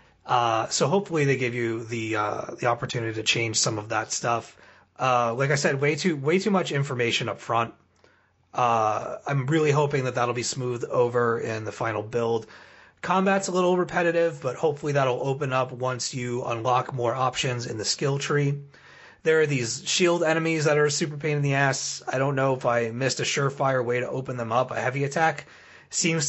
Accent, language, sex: American, English, male